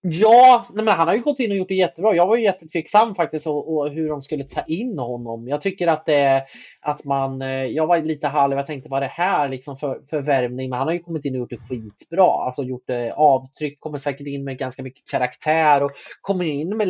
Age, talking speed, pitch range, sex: 20-39, 240 wpm, 135-180 Hz, male